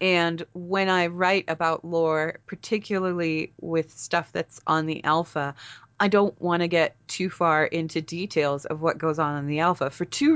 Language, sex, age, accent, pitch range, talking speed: English, female, 30-49, American, 155-190 Hz, 180 wpm